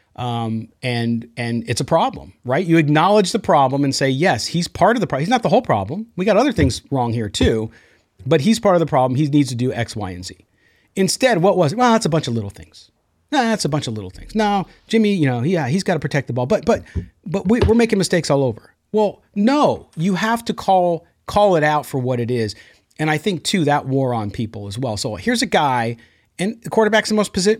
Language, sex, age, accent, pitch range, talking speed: English, male, 40-59, American, 120-185 Hz, 255 wpm